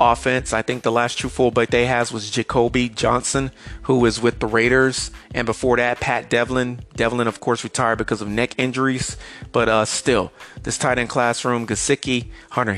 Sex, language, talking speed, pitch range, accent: male, English, 190 wpm, 110-125 Hz, American